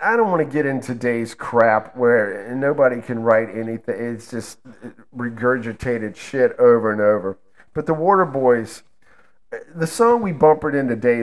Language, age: English, 40-59